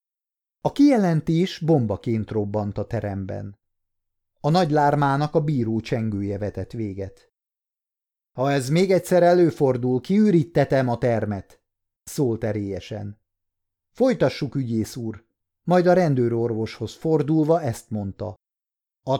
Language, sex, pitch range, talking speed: Hungarian, male, 105-155 Hz, 105 wpm